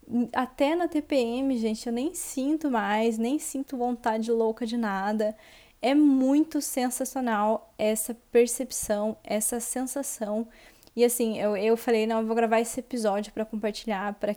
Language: Portuguese